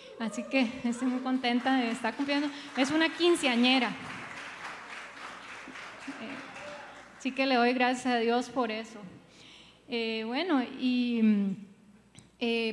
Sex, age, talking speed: female, 20-39, 115 wpm